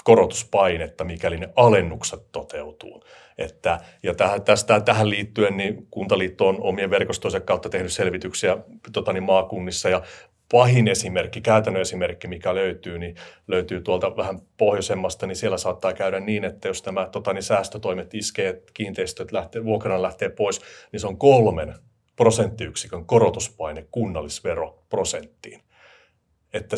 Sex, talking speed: male, 130 wpm